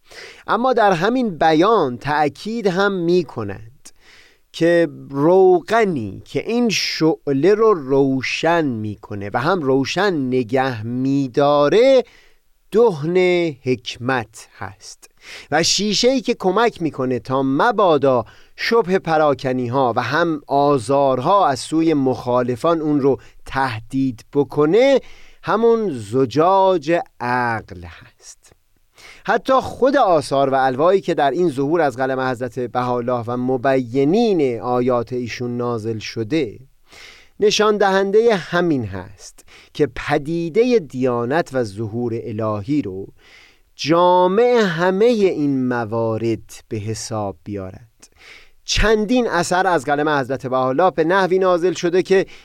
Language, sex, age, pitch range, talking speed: Persian, male, 30-49, 125-185 Hz, 110 wpm